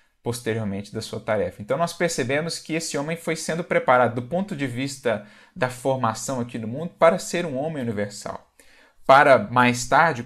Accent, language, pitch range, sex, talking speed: Brazilian, Portuguese, 110-145 Hz, male, 175 wpm